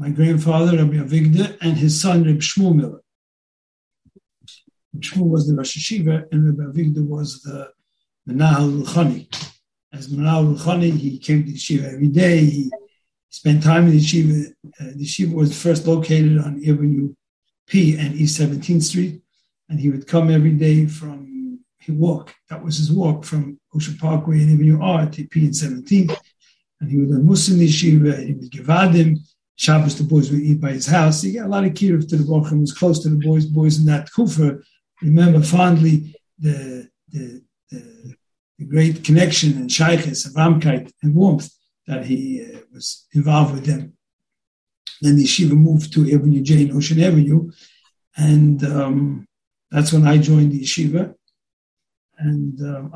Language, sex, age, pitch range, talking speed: English, male, 50-69, 145-160 Hz, 170 wpm